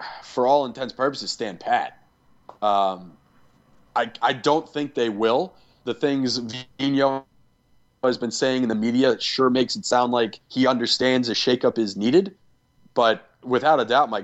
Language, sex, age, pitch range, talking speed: English, male, 30-49, 105-125 Hz, 165 wpm